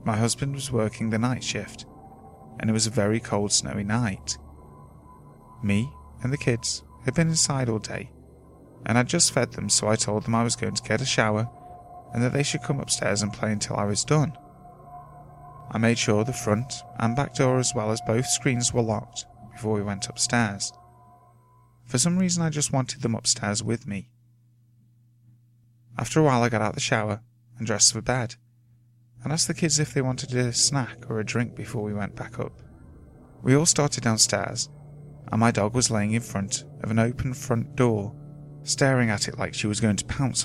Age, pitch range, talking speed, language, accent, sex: 30-49, 110-130 Hz, 200 wpm, English, British, male